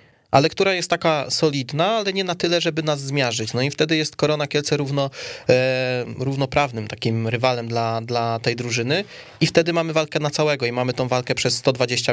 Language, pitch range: Polish, 125-145 Hz